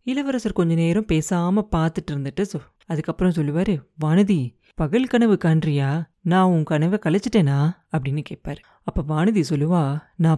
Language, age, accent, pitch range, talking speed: Tamil, 30-49, native, 165-210 Hz, 100 wpm